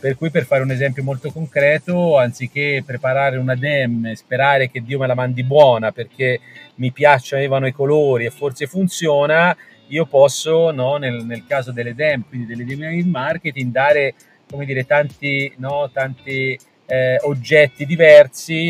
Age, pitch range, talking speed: 40-59, 130-150 Hz, 165 wpm